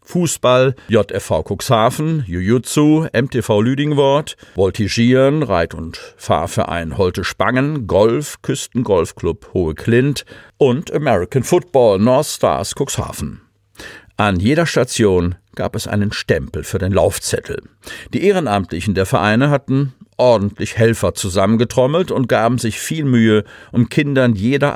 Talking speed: 115 wpm